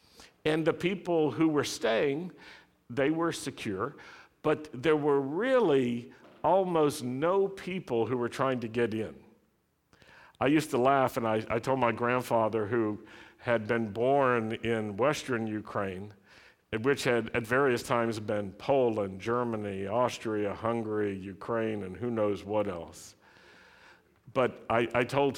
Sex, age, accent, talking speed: male, 50-69, American, 140 wpm